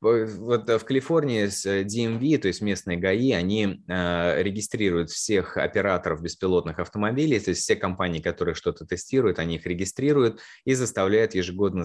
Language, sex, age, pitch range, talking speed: Russian, male, 20-39, 85-110 Hz, 135 wpm